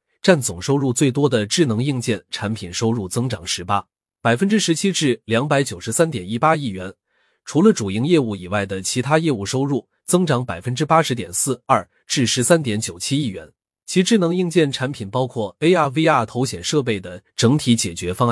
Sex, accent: male, native